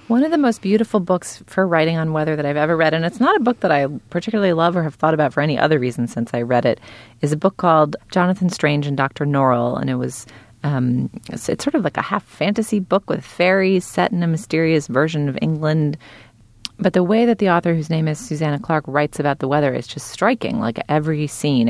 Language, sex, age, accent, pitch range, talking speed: English, female, 30-49, American, 120-170 Hz, 240 wpm